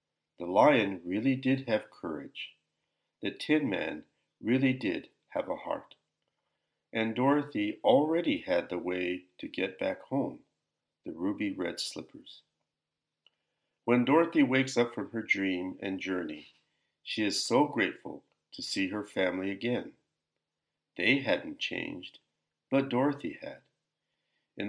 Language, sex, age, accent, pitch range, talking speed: English, male, 50-69, American, 90-135 Hz, 130 wpm